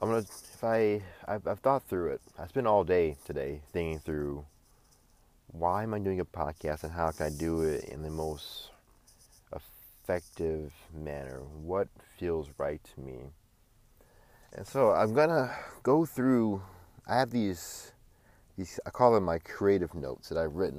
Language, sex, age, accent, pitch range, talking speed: English, male, 30-49, American, 80-105 Hz, 165 wpm